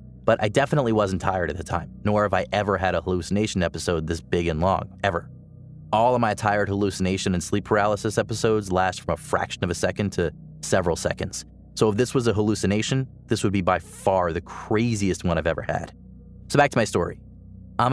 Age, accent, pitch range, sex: 30-49, American, 90-110 Hz, male